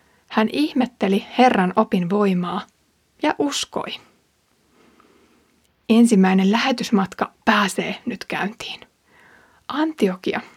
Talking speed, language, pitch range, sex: 75 wpm, Finnish, 195-240 Hz, female